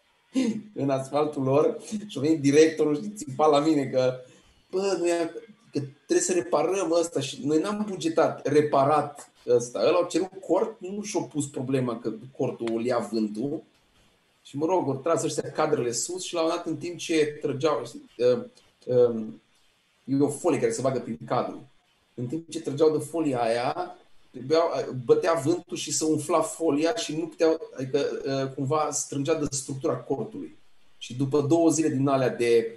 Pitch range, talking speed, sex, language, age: 135-165 Hz, 165 wpm, male, Romanian, 30-49